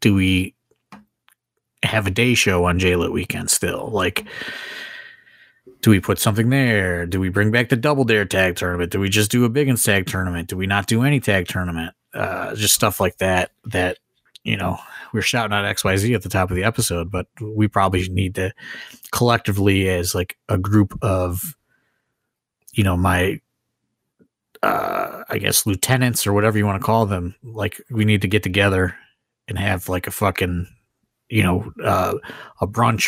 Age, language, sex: 30-49, English, male